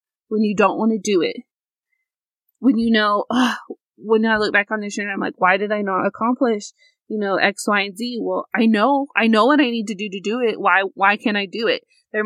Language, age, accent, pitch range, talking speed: English, 20-39, American, 215-285 Hz, 250 wpm